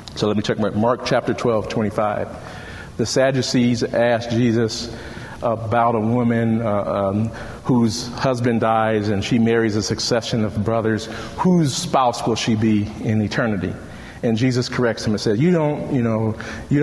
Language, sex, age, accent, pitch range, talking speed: English, male, 40-59, American, 110-130 Hz, 170 wpm